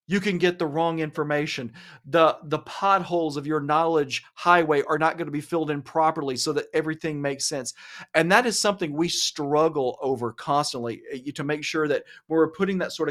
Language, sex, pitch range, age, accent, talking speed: English, male, 145-195 Hz, 40-59, American, 190 wpm